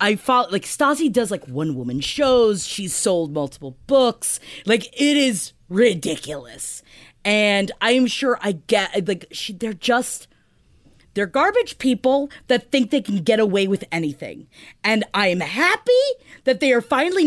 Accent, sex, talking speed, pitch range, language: American, female, 150 wpm, 185-260 Hz, English